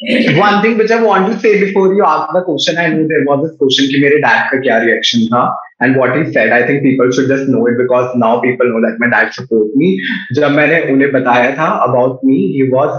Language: Hindi